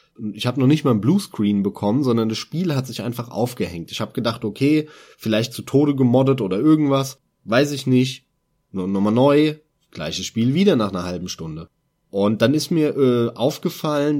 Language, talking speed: German, 185 wpm